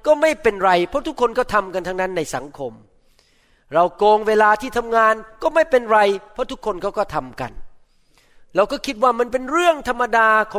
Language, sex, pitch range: Thai, male, 175-245 Hz